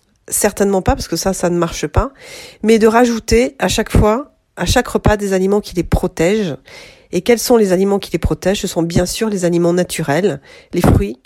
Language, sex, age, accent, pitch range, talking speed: French, female, 40-59, French, 165-210 Hz, 215 wpm